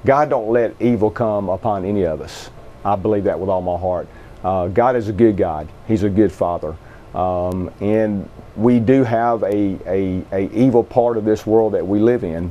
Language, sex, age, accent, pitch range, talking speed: English, male, 40-59, American, 95-115 Hz, 205 wpm